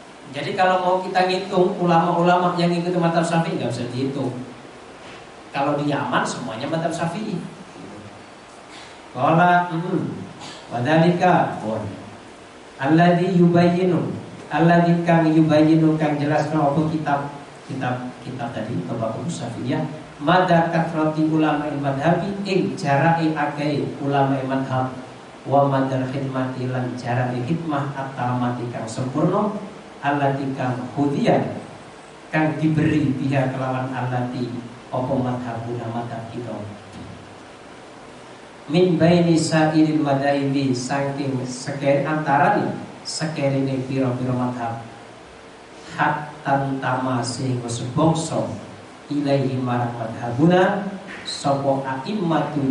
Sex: male